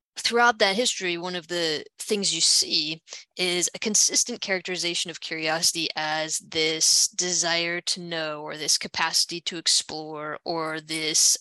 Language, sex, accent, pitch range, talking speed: English, female, American, 170-215 Hz, 140 wpm